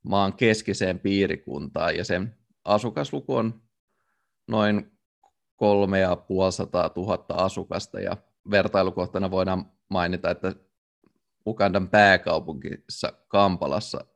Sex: male